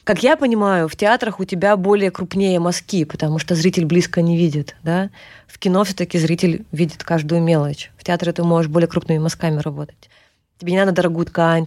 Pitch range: 165-195 Hz